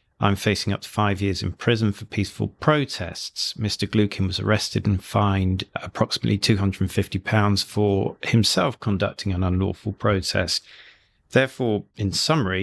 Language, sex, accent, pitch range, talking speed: English, male, British, 95-115 Hz, 140 wpm